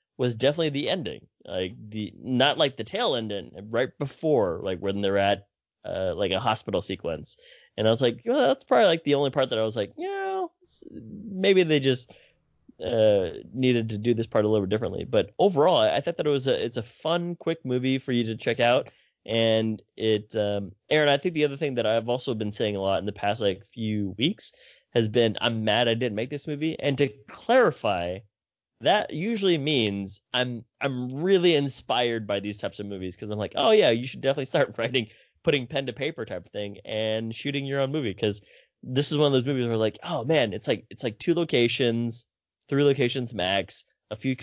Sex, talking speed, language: male, 215 wpm, English